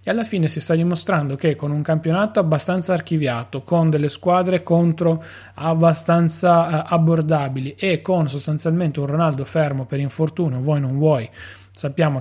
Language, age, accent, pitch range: Italian, 30-49, native, 140-170 Hz